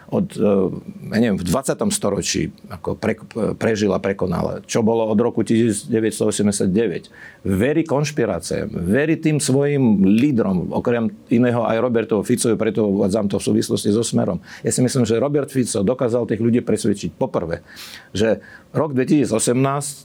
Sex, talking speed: male, 140 wpm